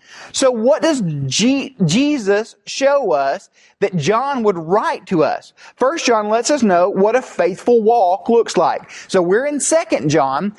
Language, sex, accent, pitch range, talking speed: English, male, American, 205-270 Hz, 165 wpm